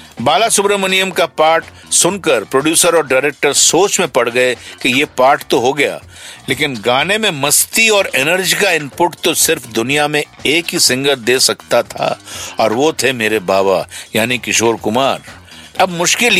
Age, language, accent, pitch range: 50-69, Hindi, native, 135-190 Hz